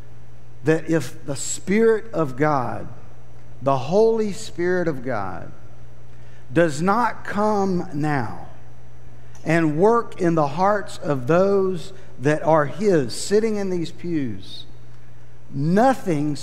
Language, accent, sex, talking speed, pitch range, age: English, American, male, 110 wpm, 110-175 Hz, 50-69